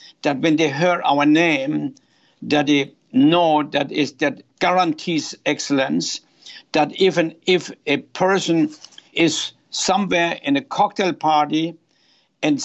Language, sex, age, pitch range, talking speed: English, male, 60-79, 155-200 Hz, 125 wpm